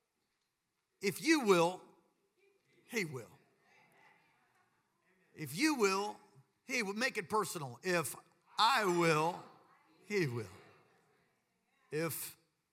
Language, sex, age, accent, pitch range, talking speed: English, male, 50-69, American, 130-175 Hz, 90 wpm